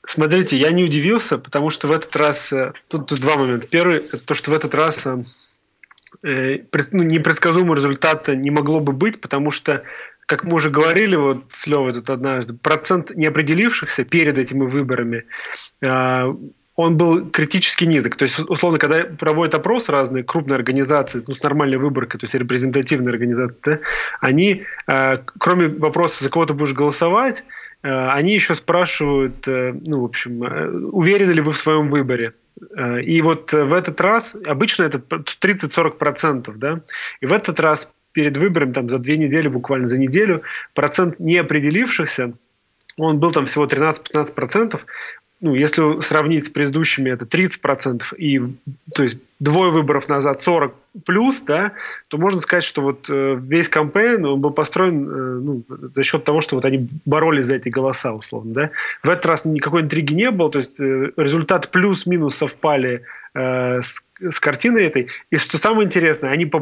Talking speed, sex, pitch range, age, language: 160 wpm, male, 135-165 Hz, 20-39, Russian